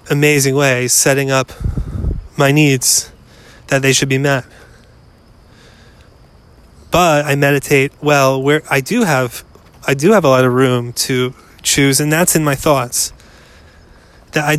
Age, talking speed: 20-39, 145 wpm